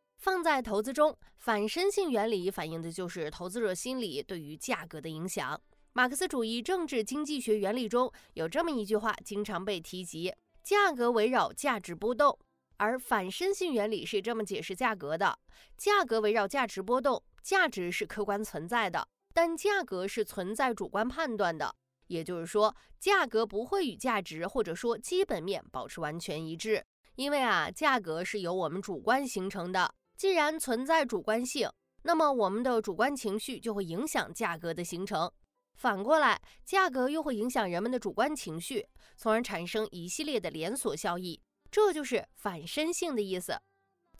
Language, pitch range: Chinese, 190-290 Hz